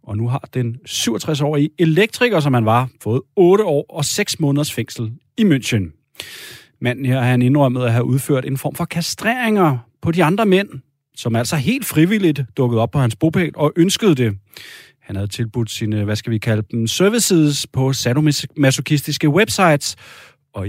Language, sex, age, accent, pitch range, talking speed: Danish, male, 30-49, native, 115-150 Hz, 175 wpm